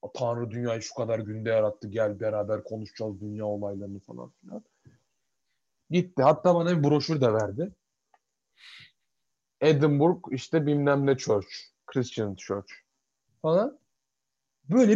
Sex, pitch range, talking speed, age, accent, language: male, 130-205 Hz, 115 wpm, 30-49, native, Turkish